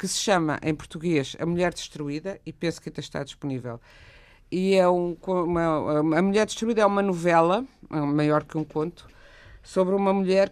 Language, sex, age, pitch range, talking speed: Portuguese, female, 50-69, 150-180 Hz, 155 wpm